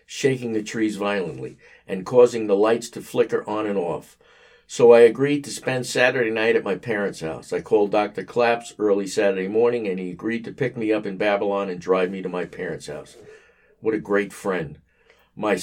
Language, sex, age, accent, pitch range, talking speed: English, male, 50-69, American, 100-125 Hz, 200 wpm